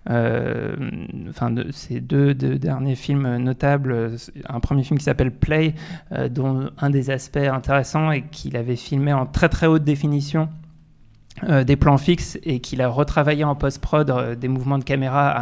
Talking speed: 170 wpm